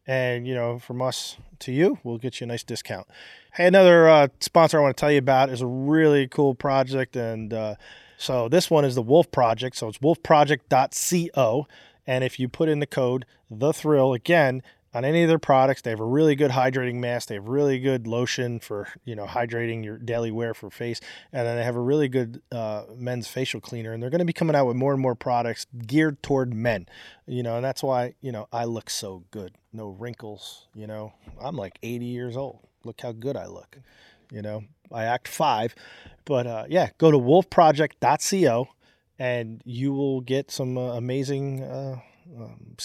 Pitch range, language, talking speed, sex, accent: 115-145 Hz, English, 205 wpm, male, American